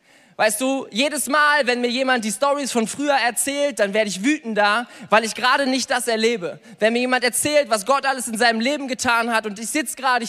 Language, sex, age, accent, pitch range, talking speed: German, male, 20-39, German, 210-255 Hz, 220 wpm